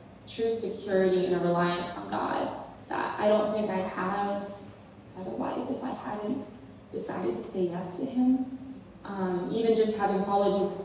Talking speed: 160 wpm